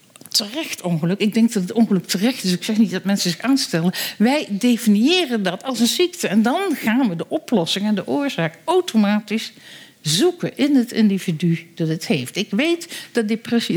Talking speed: 185 wpm